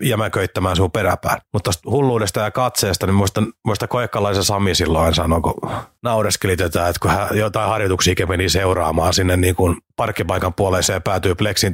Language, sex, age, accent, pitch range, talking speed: Finnish, male, 30-49, native, 95-115 Hz, 160 wpm